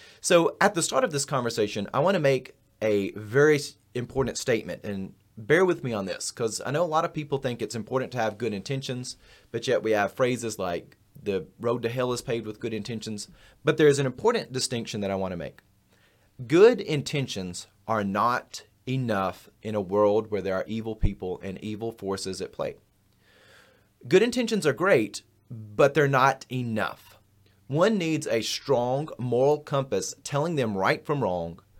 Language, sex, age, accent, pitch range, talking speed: English, male, 30-49, American, 100-140 Hz, 185 wpm